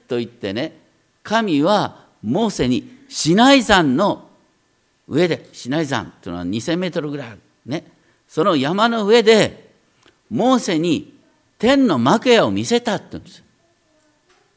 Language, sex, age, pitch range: Japanese, male, 50-69, 150-245 Hz